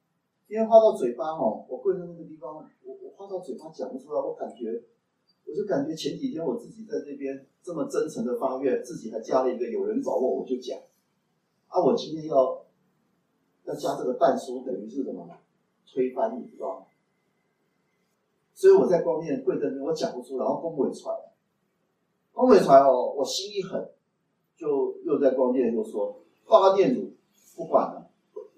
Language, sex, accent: Chinese, male, native